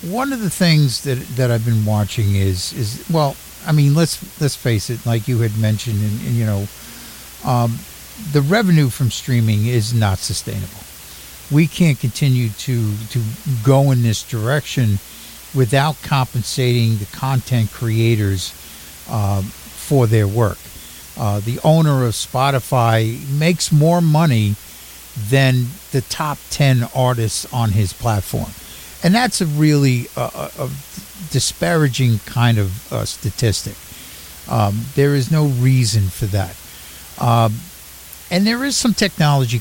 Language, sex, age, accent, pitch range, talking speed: English, male, 60-79, American, 110-145 Hz, 140 wpm